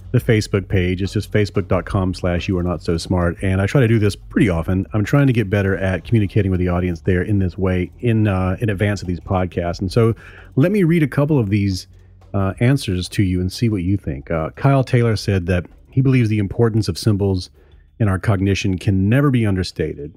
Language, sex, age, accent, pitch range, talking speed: English, male, 40-59, American, 95-120 Hz, 230 wpm